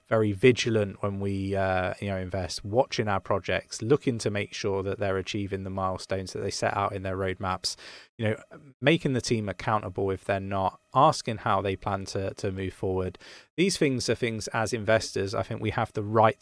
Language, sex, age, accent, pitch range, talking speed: English, male, 20-39, British, 95-120 Hz, 205 wpm